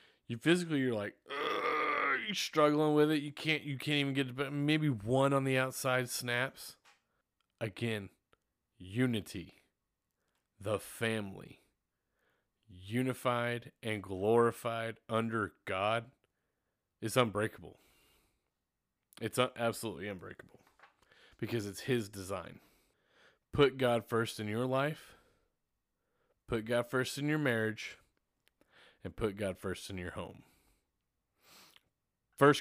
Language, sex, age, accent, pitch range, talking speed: English, male, 30-49, American, 105-130 Hz, 110 wpm